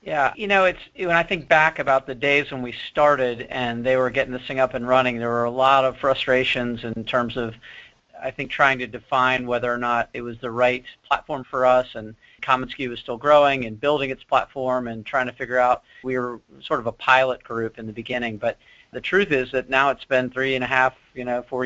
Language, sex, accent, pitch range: English, male, American, 120-135 Hz